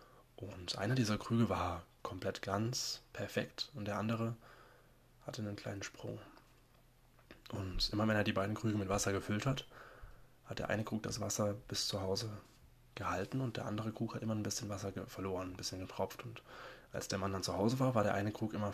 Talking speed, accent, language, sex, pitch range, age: 200 wpm, German, German, male, 100-120 Hz, 20-39